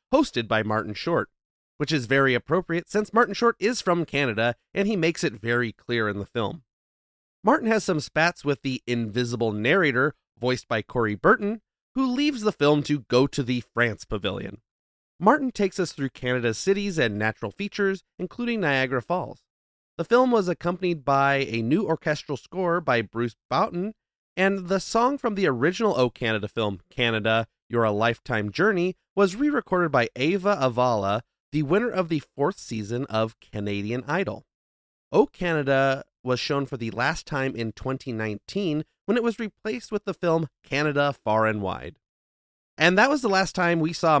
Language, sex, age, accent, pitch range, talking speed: English, male, 30-49, American, 115-185 Hz, 170 wpm